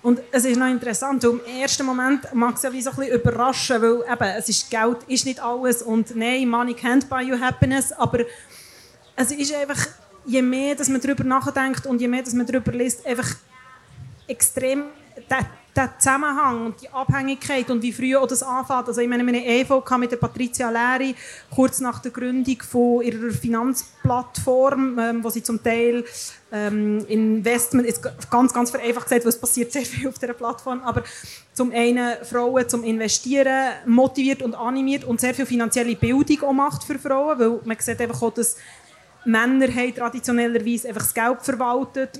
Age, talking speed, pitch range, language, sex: 30-49, 170 wpm, 235-260 Hz, German, female